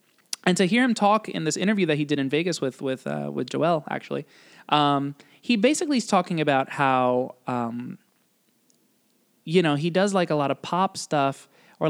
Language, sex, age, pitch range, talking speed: English, male, 20-39, 130-170 Hz, 190 wpm